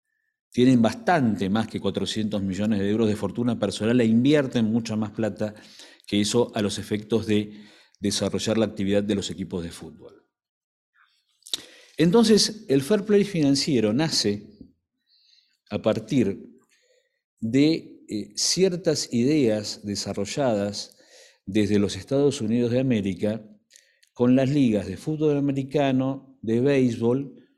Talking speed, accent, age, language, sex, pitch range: 120 wpm, Argentinian, 50-69, Spanish, male, 110-165 Hz